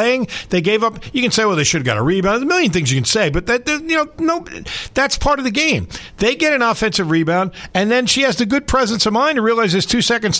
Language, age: English, 50-69